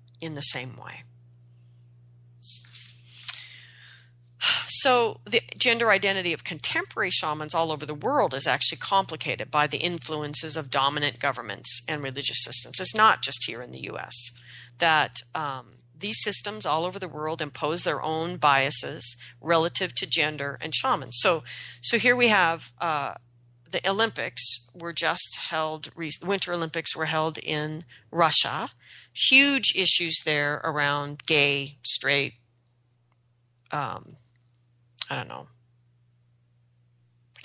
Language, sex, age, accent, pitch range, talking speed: English, female, 40-59, American, 120-195 Hz, 130 wpm